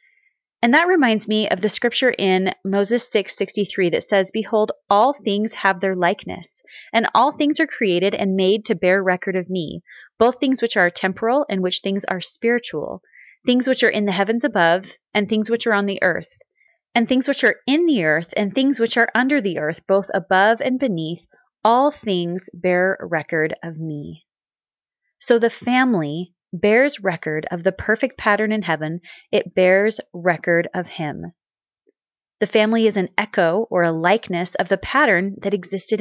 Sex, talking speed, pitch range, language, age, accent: female, 180 wpm, 185-235 Hz, English, 30-49, American